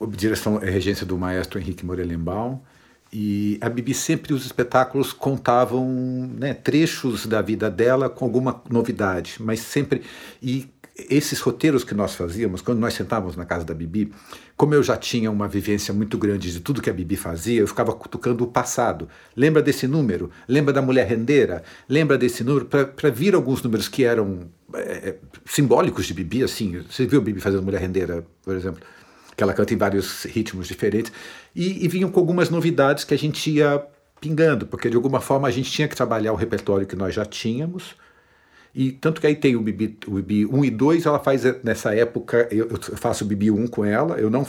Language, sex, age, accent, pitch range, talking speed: Portuguese, male, 50-69, Brazilian, 100-135 Hz, 195 wpm